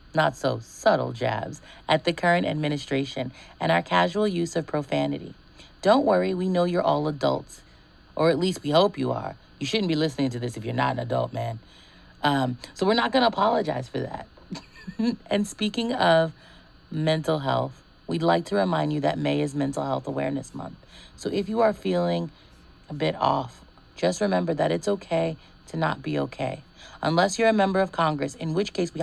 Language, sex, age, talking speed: English, female, 30-49, 190 wpm